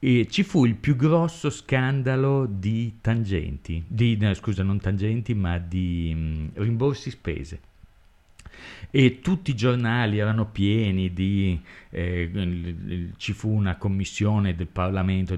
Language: Italian